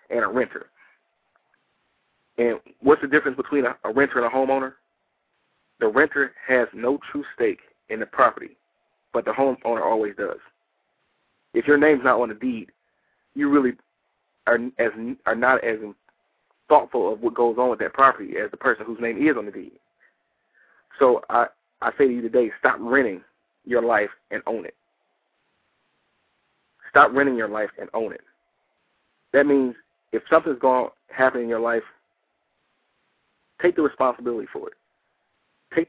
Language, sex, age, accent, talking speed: English, male, 30-49, American, 160 wpm